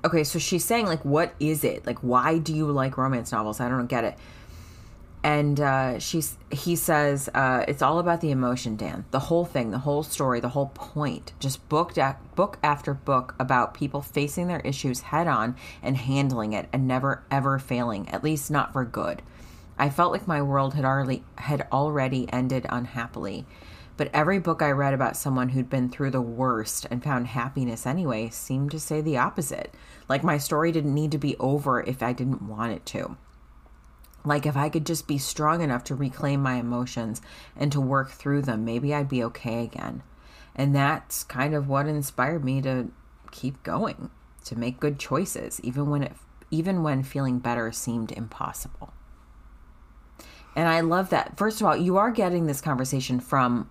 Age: 30-49